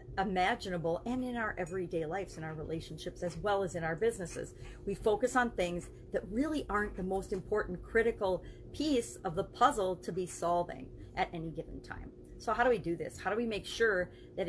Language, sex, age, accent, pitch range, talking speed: English, female, 40-59, American, 180-245 Hz, 205 wpm